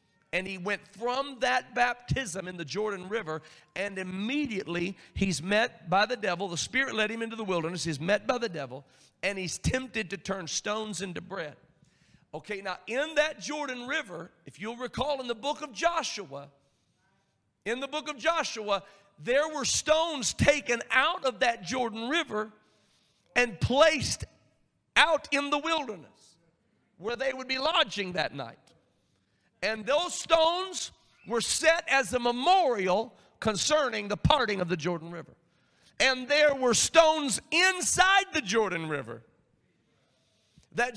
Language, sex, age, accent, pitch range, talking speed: English, male, 50-69, American, 195-290 Hz, 150 wpm